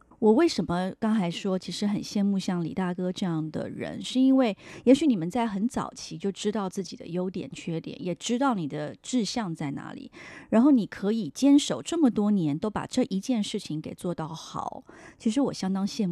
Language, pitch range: Chinese, 185-260 Hz